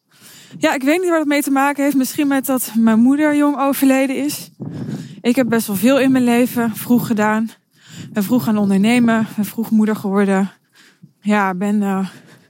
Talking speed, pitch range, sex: 185 wpm, 205-260 Hz, female